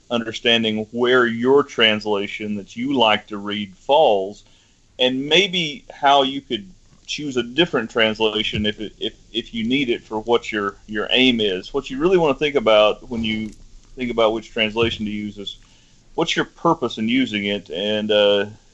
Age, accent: 40-59, American